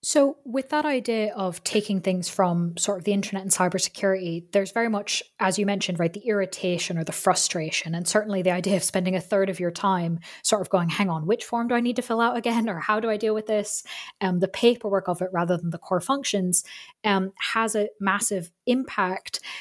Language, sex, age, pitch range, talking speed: English, female, 10-29, 180-225 Hz, 225 wpm